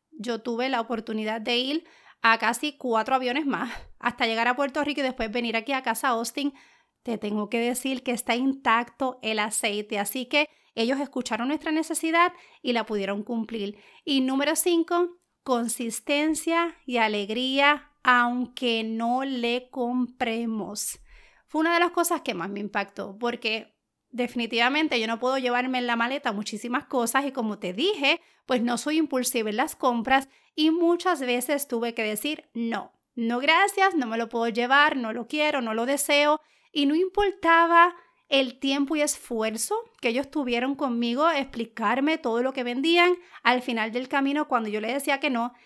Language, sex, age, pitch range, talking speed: Spanish, female, 30-49, 230-295 Hz, 170 wpm